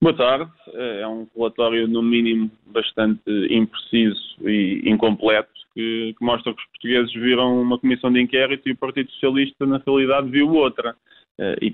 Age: 20-39